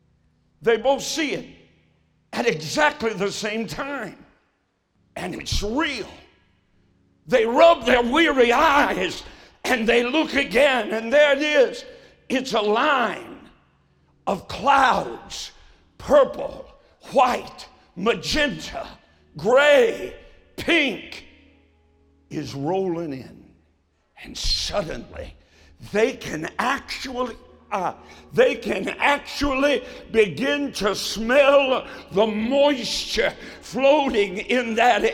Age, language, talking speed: 60-79, English, 95 wpm